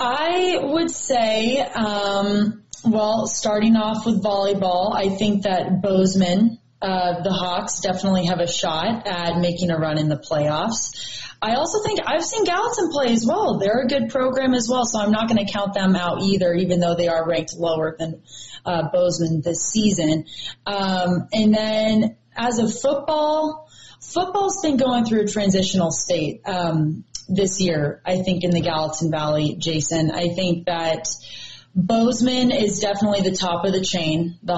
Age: 30-49